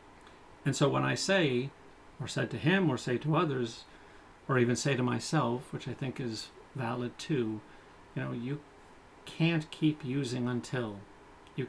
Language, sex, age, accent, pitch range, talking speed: English, male, 40-59, American, 120-145 Hz, 165 wpm